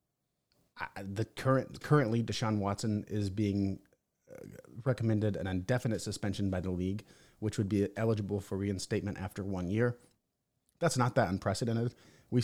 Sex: male